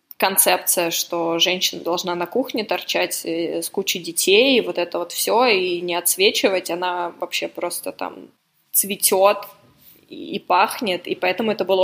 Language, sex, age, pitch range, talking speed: Russian, female, 20-39, 175-195 Hz, 140 wpm